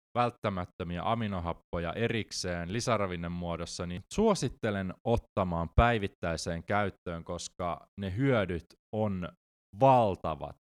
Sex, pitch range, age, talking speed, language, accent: male, 80-105 Hz, 20-39, 80 wpm, Finnish, native